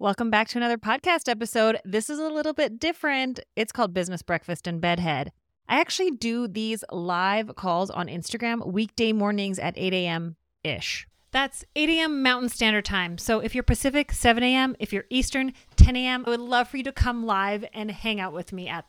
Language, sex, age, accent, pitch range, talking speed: English, female, 30-49, American, 175-260 Hz, 200 wpm